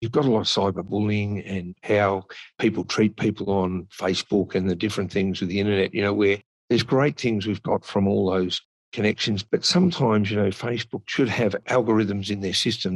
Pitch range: 100-120 Hz